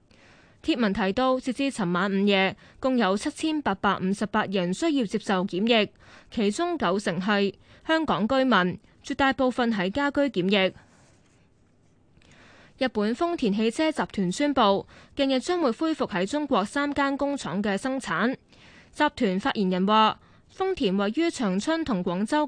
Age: 20-39